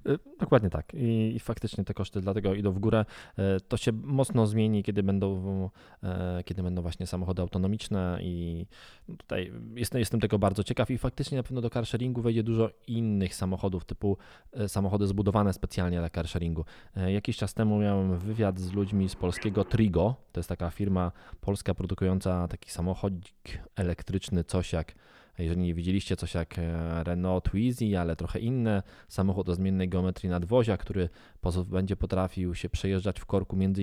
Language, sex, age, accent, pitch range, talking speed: Polish, male, 20-39, native, 90-105 Hz, 155 wpm